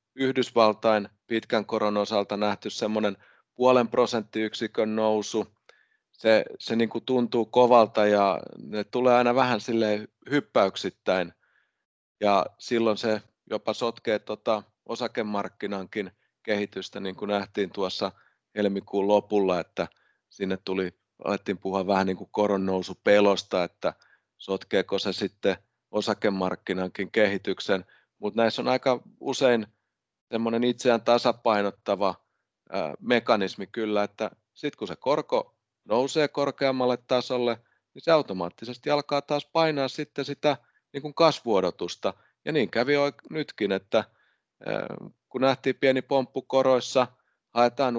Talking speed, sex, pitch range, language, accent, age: 115 wpm, male, 105-125 Hz, Finnish, native, 30-49